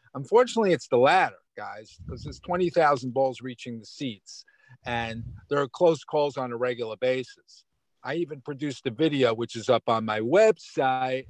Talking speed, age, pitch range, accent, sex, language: 170 wpm, 50-69, 125-155 Hz, American, male, English